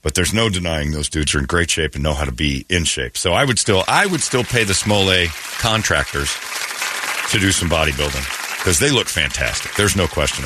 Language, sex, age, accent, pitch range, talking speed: English, male, 50-69, American, 90-125 Hz, 225 wpm